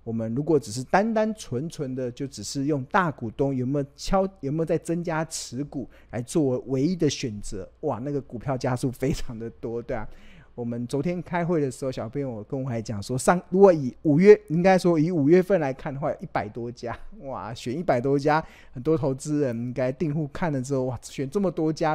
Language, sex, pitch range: Chinese, male, 120-160 Hz